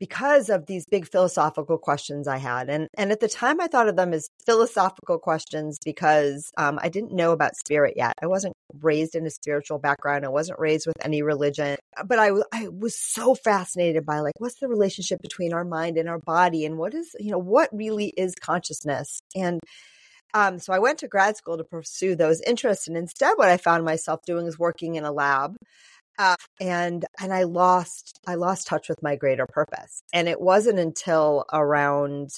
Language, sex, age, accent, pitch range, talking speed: English, female, 30-49, American, 155-195 Hz, 200 wpm